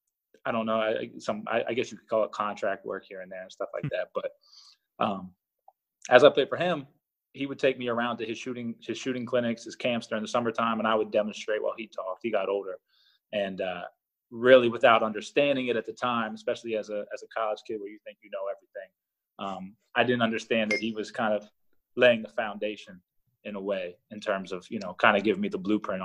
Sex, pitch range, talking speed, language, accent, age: male, 105-140 Hz, 235 wpm, English, American, 20-39